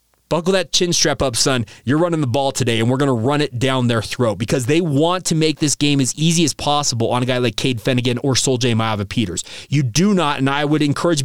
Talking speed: 250 wpm